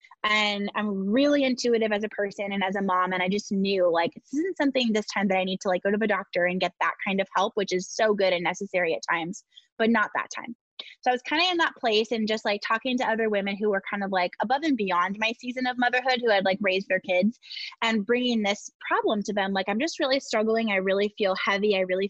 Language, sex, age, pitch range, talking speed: English, female, 10-29, 195-230 Hz, 265 wpm